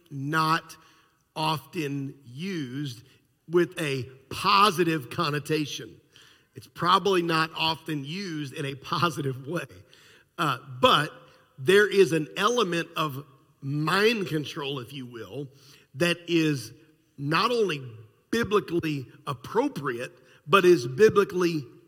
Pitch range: 140-170 Hz